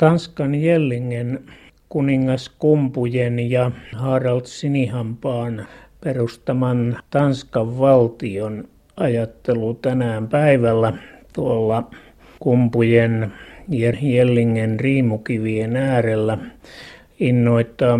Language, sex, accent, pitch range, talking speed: Finnish, male, native, 115-135 Hz, 65 wpm